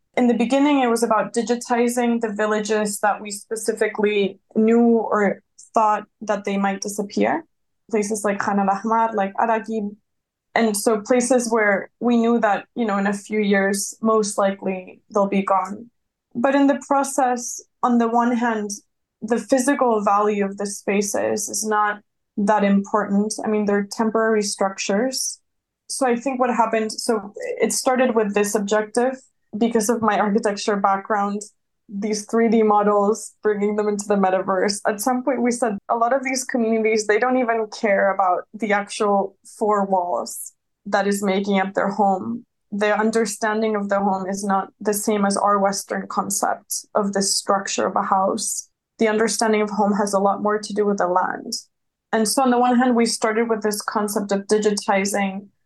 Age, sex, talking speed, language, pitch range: 20-39, female, 175 wpm, English, 205-230 Hz